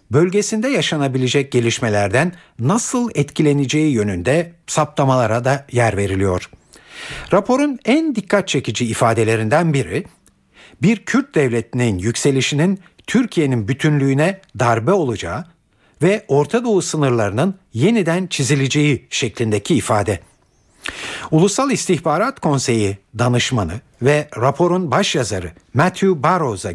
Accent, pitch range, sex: native, 125-185 Hz, male